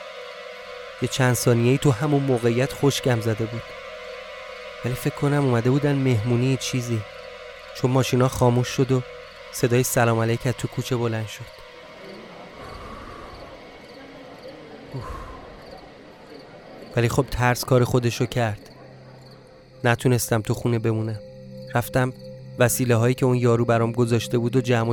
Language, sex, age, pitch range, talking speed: Persian, male, 30-49, 115-135 Hz, 120 wpm